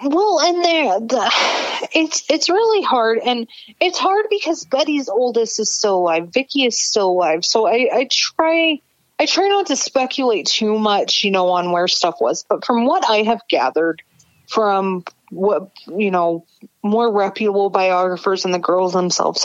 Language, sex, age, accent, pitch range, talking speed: English, female, 30-49, American, 185-235 Hz, 165 wpm